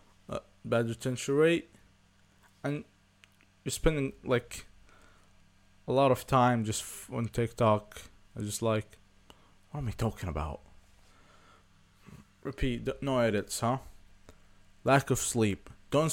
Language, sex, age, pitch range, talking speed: English, male, 20-39, 95-130 Hz, 120 wpm